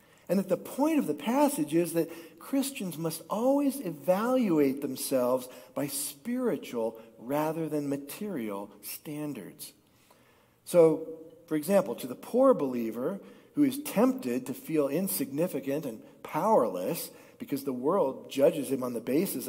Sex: male